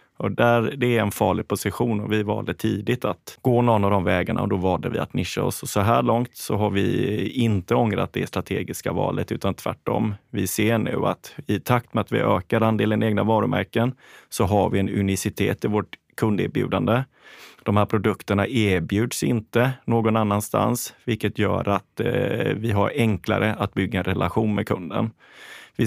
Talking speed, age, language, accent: 175 wpm, 30-49, English, Swedish